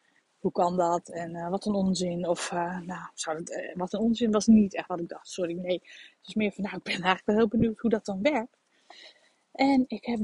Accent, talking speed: Dutch, 250 wpm